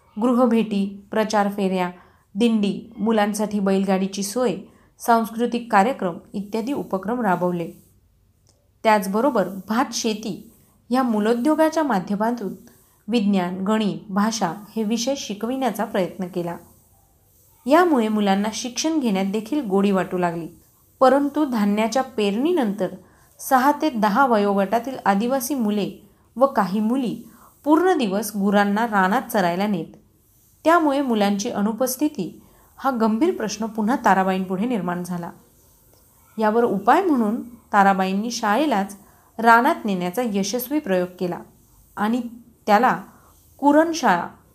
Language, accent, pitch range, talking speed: Marathi, native, 195-240 Hz, 100 wpm